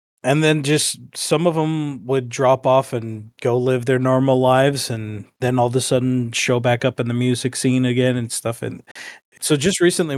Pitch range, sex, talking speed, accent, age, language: 120-140 Hz, male, 205 wpm, American, 20-39, English